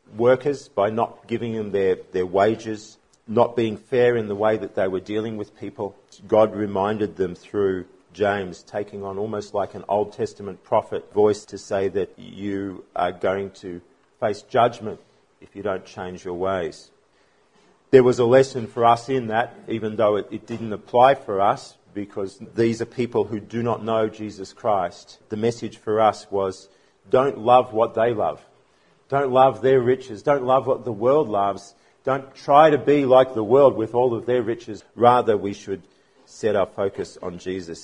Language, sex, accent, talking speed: English, male, Australian, 180 wpm